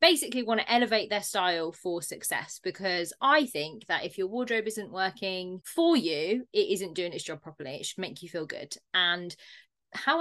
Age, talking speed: 20-39, 195 wpm